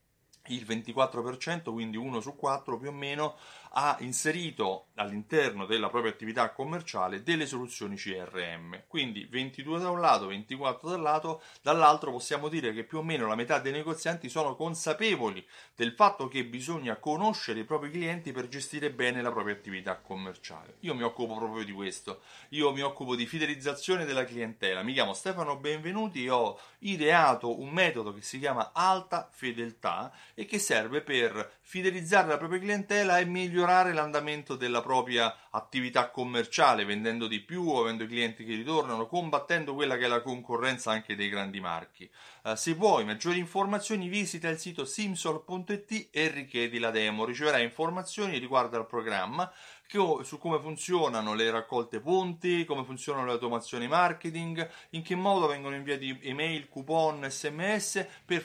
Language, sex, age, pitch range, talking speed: Italian, male, 30-49, 120-165 Hz, 160 wpm